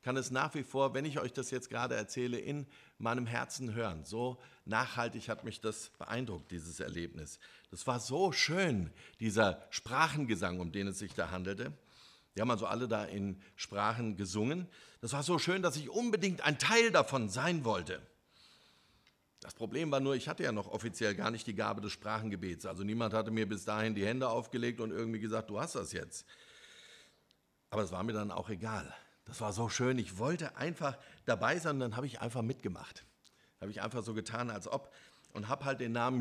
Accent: German